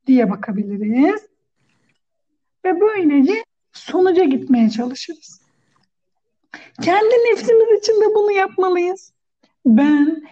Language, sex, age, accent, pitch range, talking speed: Turkish, female, 60-79, native, 240-325 Hz, 80 wpm